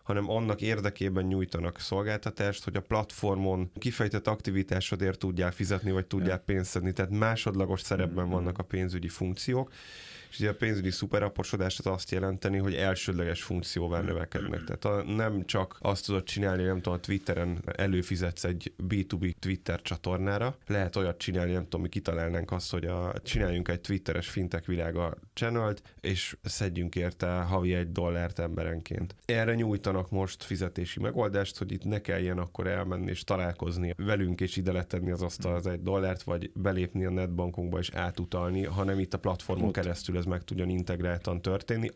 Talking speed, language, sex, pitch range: 155 wpm, Hungarian, male, 90-100 Hz